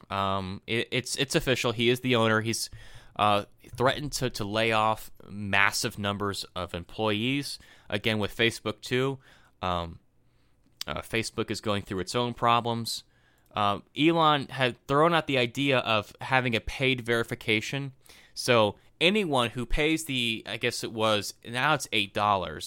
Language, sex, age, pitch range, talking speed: English, male, 20-39, 110-155 Hz, 145 wpm